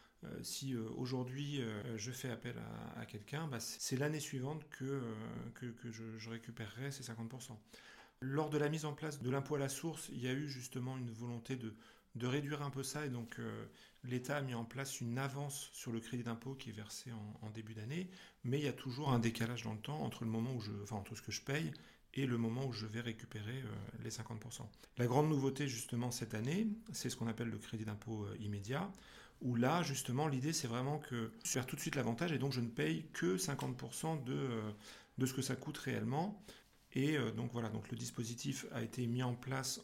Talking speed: 230 wpm